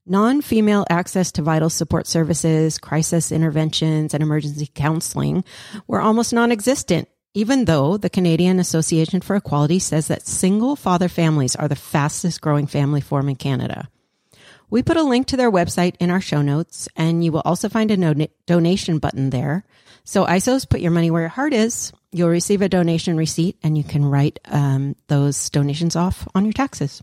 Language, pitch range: English, 150-190 Hz